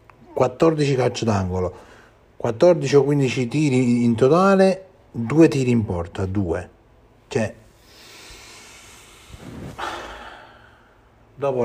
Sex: male